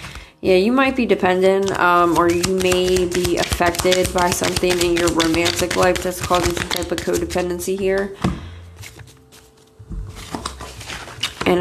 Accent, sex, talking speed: American, female, 130 wpm